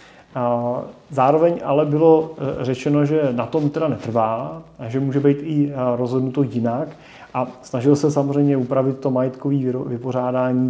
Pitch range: 120-145 Hz